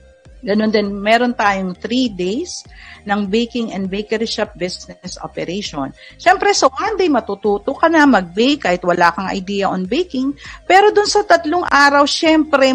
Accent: native